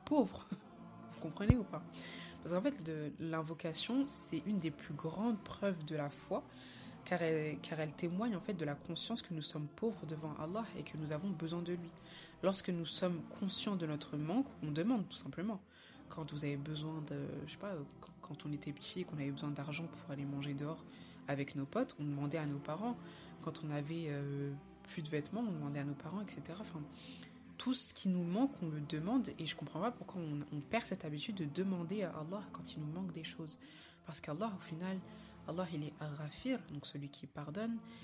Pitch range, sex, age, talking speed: 150-190 Hz, female, 20-39, 220 wpm